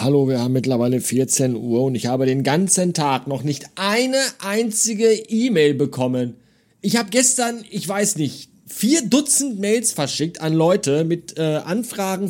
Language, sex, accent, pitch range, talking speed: German, male, German, 145-230 Hz, 160 wpm